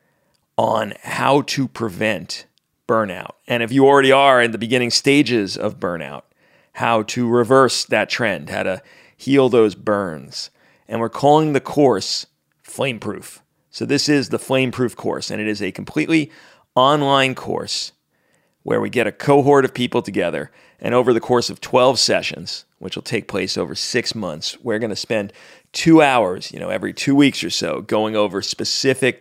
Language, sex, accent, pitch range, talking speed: English, male, American, 115-140 Hz, 170 wpm